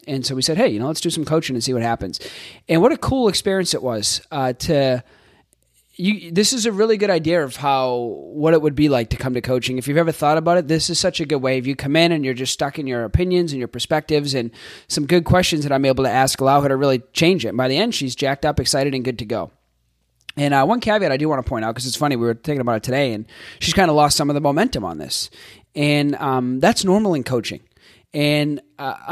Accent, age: American, 30-49